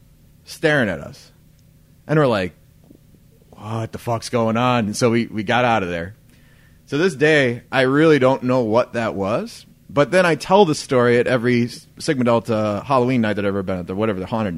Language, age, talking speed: English, 30-49, 205 wpm